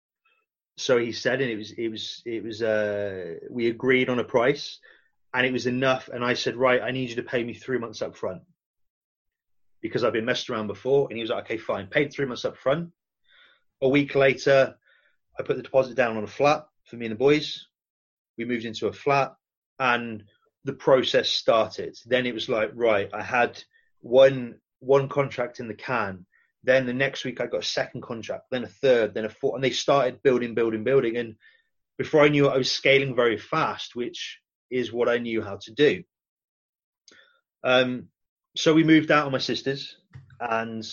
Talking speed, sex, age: 200 wpm, male, 30-49